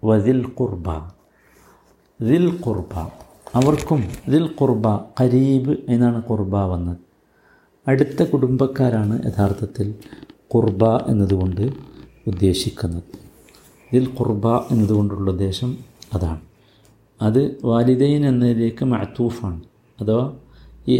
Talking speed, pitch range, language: 80 wpm, 100-135 Hz, Malayalam